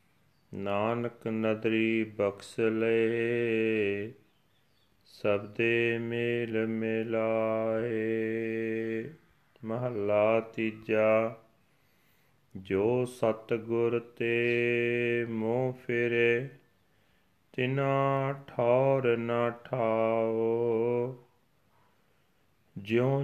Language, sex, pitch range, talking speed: Punjabi, male, 110-120 Hz, 55 wpm